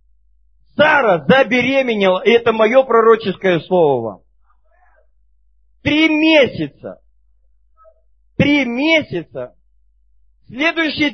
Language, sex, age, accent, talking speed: Russian, male, 40-59, native, 70 wpm